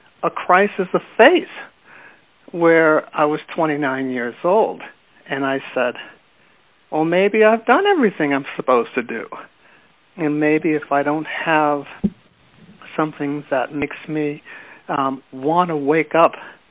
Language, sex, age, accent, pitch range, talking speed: English, male, 60-79, American, 140-180 Hz, 135 wpm